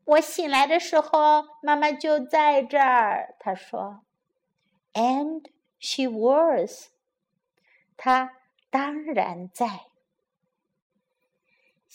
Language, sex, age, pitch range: Chinese, female, 50-69, 200-275 Hz